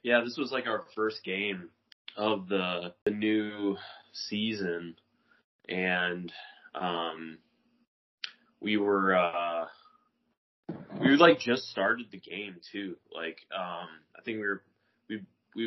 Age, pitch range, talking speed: 20-39, 90-115 Hz, 125 wpm